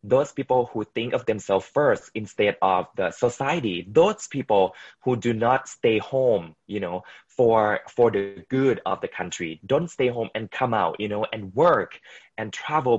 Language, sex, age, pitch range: Chinese, male, 20-39, 100-130 Hz